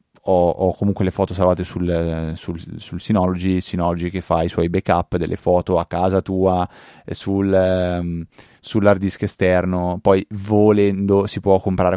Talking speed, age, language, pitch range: 135 wpm, 30-49, Italian, 90-105 Hz